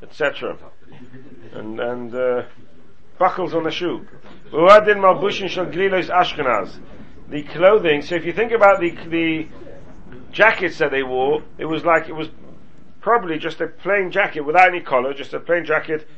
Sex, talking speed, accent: male, 140 wpm, British